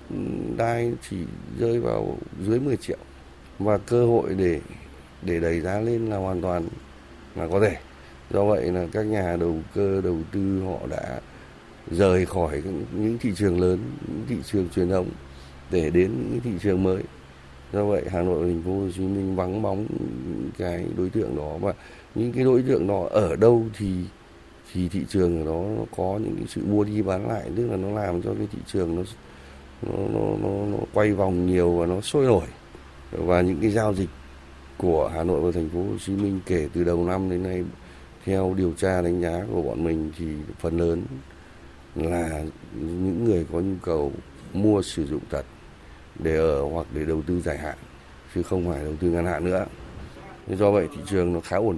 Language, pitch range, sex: Vietnamese, 80-100 Hz, male